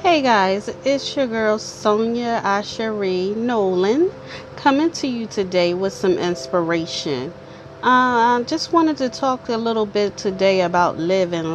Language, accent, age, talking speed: English, American, 40-59, 145 wpm